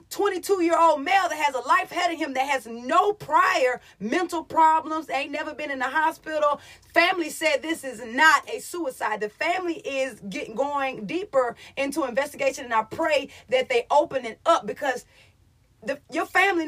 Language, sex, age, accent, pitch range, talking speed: English, female, 30-49, American, 245-335 Hz, 175 wpm